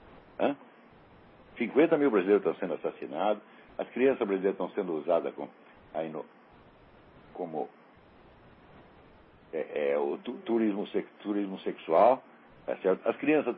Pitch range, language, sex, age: 175-250 Hz, Portuguese, male, 60-79